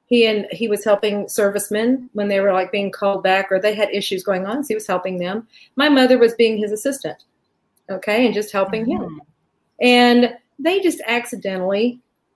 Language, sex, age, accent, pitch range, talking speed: English, female, 40-59, American, 195-240 Hz, 190 wpm